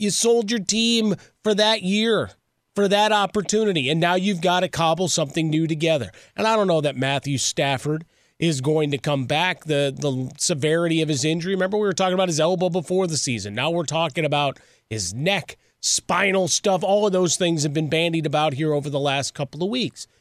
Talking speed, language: 210 wpm, English